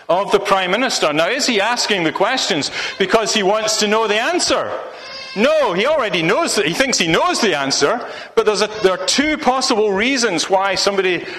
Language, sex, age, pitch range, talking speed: English, male, 40-59, 190-270 Hz, 200 wpm